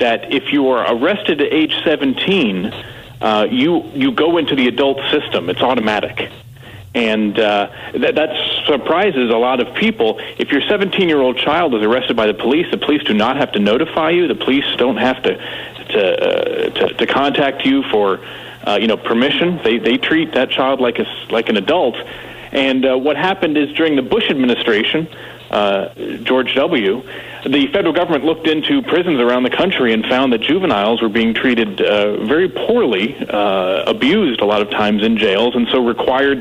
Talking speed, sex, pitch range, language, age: 190 wpm, male, 120-170 Hz, English, 40-59